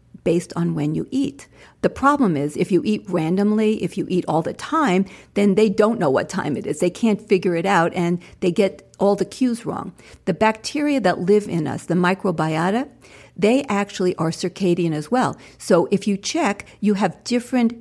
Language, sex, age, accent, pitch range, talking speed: English, female, 50-69, American, 170-215 Hz, 200 wpm